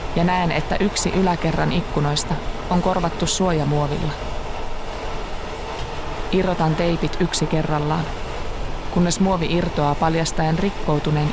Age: 20-39